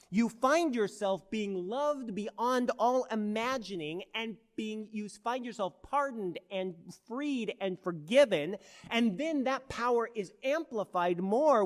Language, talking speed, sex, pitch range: English, 130 wpm, male, 150-215 Hz